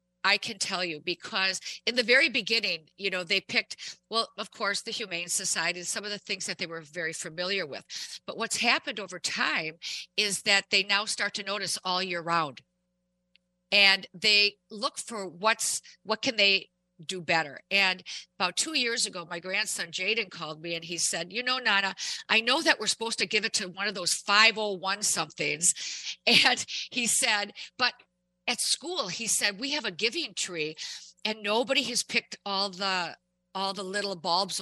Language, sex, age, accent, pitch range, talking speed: English, female, 50-69, American, 175-220 Hz, 185 wpm